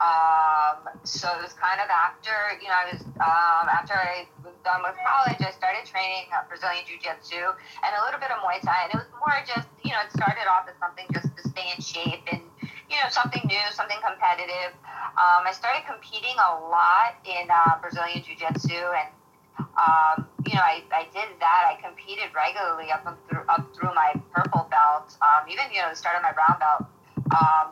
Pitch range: 165-200 Hz